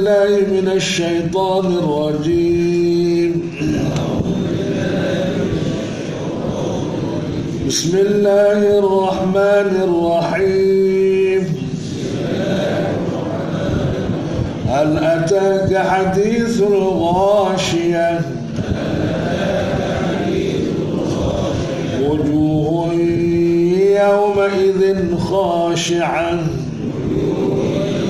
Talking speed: 35 wpm